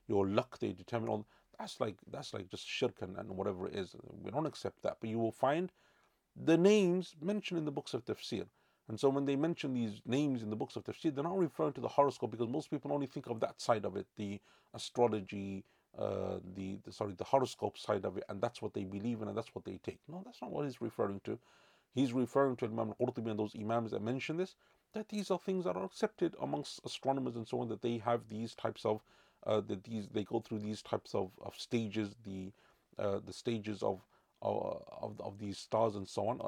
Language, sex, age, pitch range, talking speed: English, male, 40-59, 100-135 Hz, 230 wpm